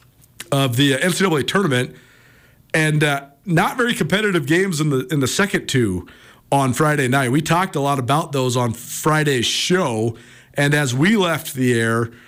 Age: 40-59